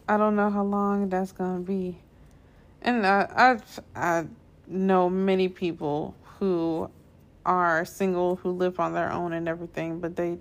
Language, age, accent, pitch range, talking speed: English, 20-39, American, 170-200 Hz, 160 wpm